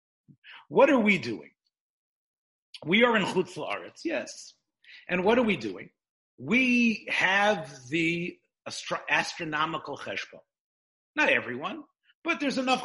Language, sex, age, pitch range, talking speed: English, male, 50-69, 155-230 Hz, 115 wpm